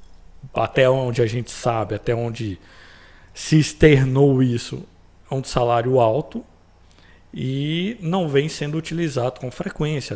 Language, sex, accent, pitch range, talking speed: Portuguese, male, Brazilian, 105-150 Hz, 125 wpm